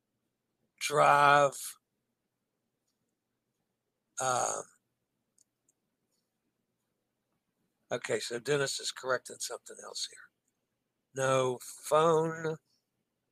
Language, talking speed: English, 55 wpm